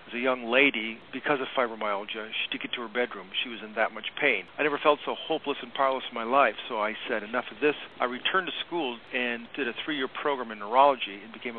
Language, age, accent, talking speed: English, 50-69, American, 245 wpm